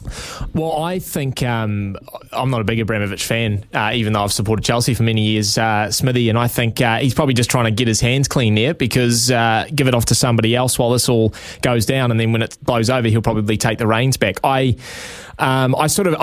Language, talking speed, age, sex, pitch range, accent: English, 240 wpm, 20-39, male, 110-135 Hz, Australian